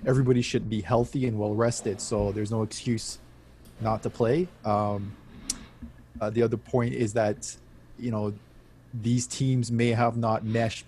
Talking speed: 160 wpm